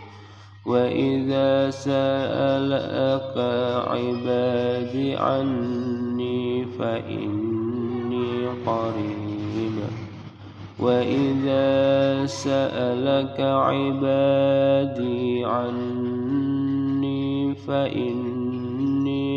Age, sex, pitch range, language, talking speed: 20-39, male, 120-135 Hz, Indonesian, 35 wpm